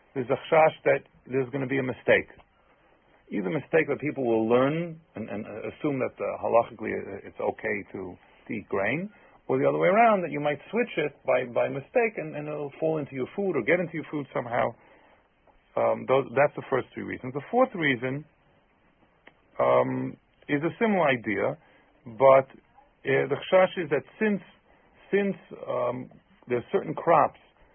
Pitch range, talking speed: 120-175 Hz, 180 wpm